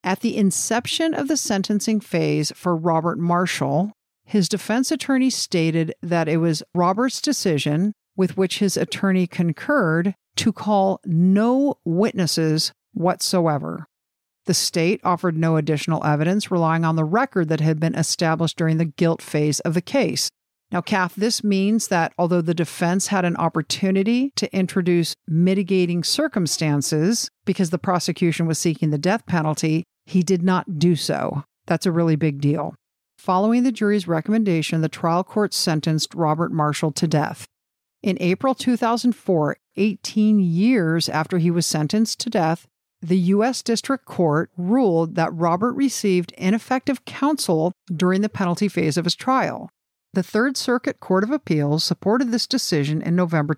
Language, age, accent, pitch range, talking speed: English, 50-69, American, 165-210 Hz, 150 wpm